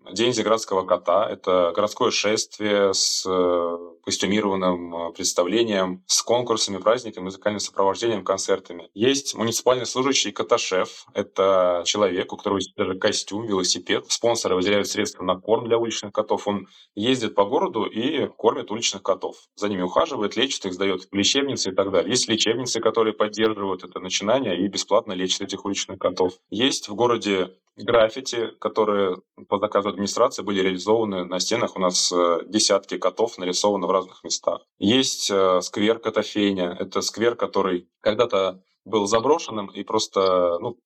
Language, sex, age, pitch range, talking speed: Russian, male, 20-39, 95-110 Hz, 145 wpm